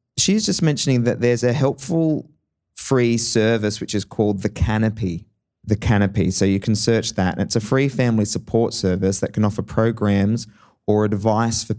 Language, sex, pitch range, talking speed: English, male, 105-130 Hz, 175 wpm